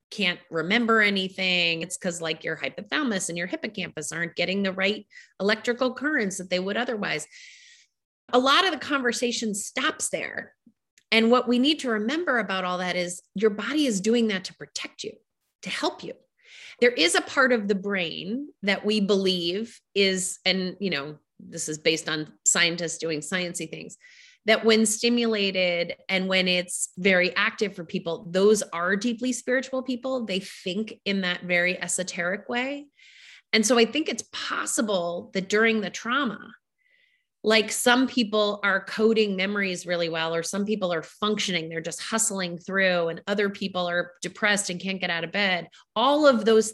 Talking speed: 170 wpm